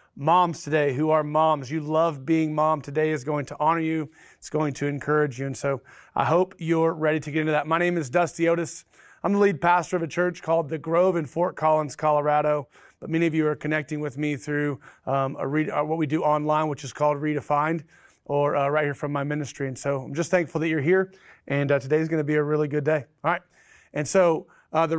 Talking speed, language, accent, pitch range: 240 wpm, English, American, 150-175 Hz